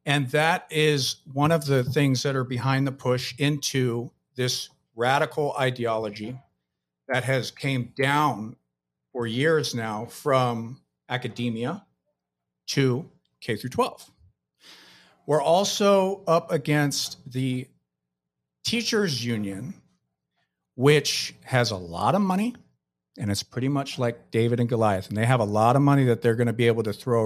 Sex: male